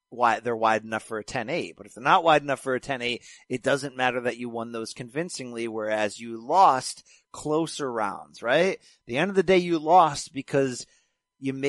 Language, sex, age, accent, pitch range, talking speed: English, male, 30-49, American, 120-165 Hz, 205 wpm